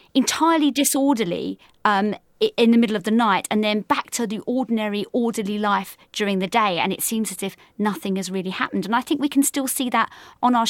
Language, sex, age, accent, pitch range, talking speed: English, female, 30-49, British, 190-245 Hz, 220 wpm